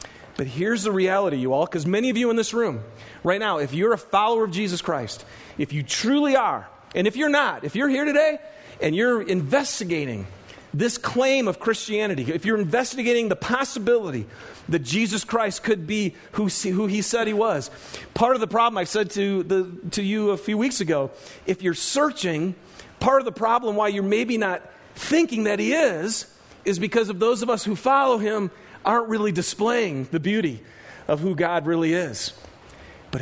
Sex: male